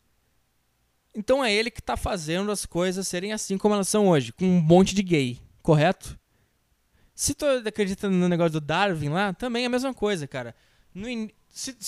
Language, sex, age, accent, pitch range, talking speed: English, male, 20-39, Brazilian, 155-210 Hz, 180 wpm